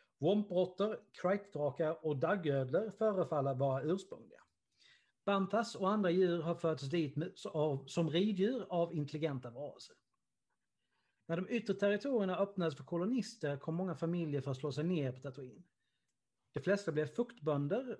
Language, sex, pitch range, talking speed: Swedish, male, 145-195 Hz, 135 wpm